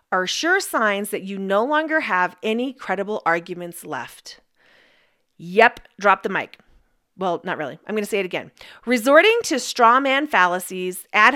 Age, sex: 40-59, female